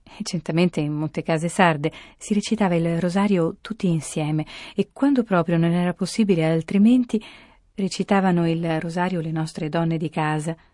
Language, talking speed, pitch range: Italian, 145 wpm, 160-185 Hz